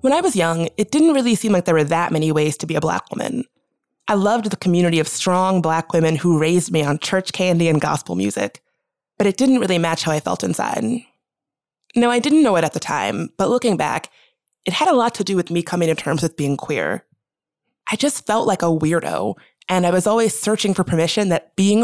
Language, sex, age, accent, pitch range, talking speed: English, female, 20-39, American, 160-225 Hz, 235 wpm